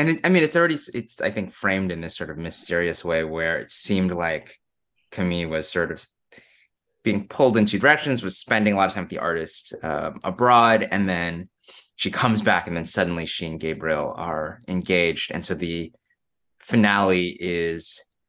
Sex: male